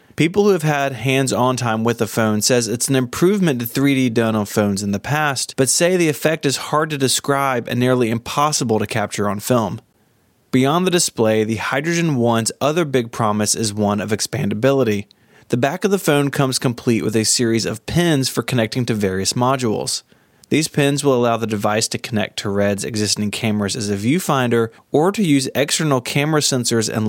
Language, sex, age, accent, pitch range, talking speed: English, male, 20-39, American, 110-140 Hz, 195 wpm